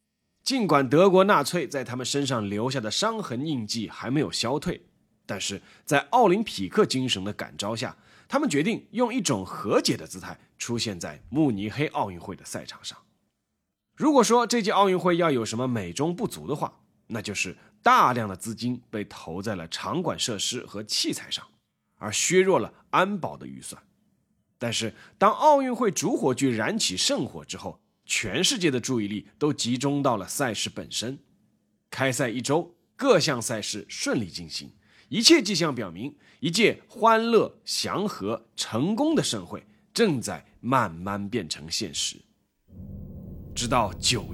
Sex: male